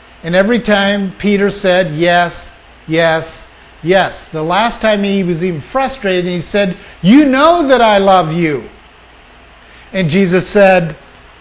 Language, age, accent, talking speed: English, 50-69, American, 140 wpm